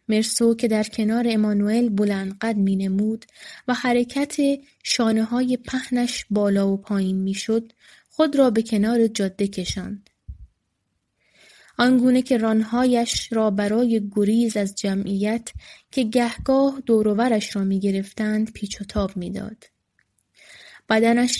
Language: Persian